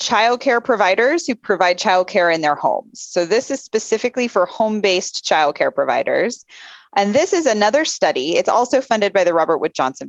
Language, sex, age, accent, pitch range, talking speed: English, female, 20-39, American, 165-225 Hz, 190 wpm